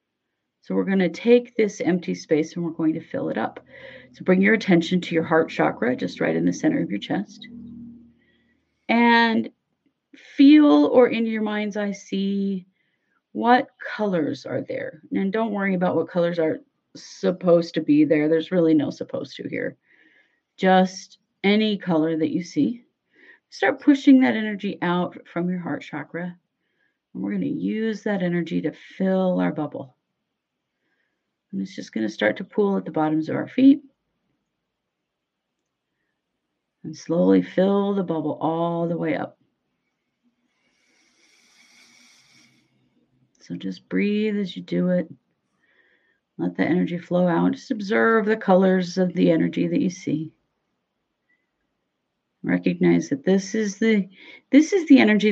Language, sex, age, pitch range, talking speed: English, female, 40-59, 160-220 Hz, 150 wpm